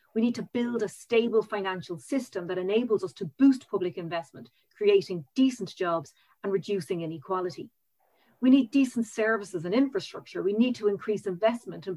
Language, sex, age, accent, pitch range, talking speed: English, female, 30-49, Irish, 175-225 Hz, 165 wpm